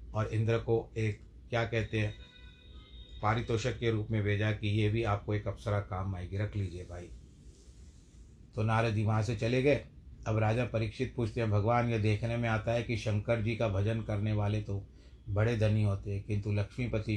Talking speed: 185 wpm